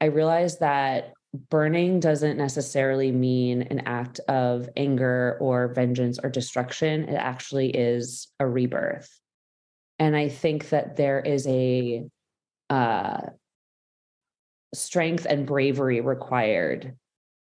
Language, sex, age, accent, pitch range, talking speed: English, female, 30-49, American, 135-165 Hz, 110 wpm